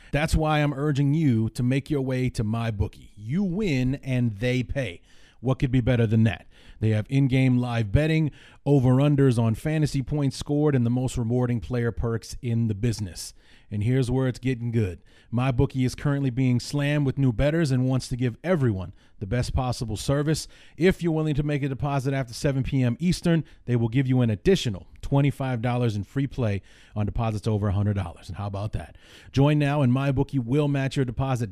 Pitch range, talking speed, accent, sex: 110-140 Hz, 200 wpm, American, male